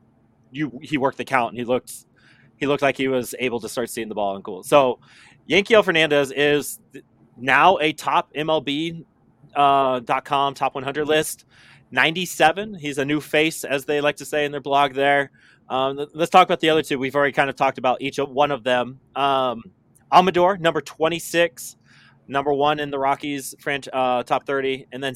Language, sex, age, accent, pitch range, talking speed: English, male, 20-39, American, 125-150 Hz, 190 wpm